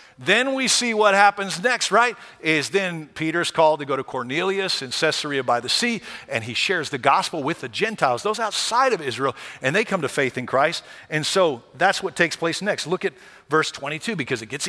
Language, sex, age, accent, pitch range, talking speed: English, male, 50-69, American, 155-215 Hz, 215 wpm